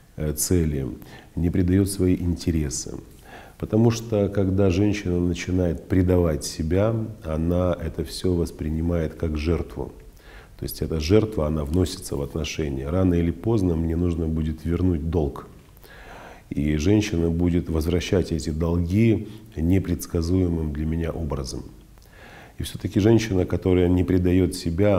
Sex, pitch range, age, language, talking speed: male, 80-95 Hz, 40-59, Russian, 120 wpm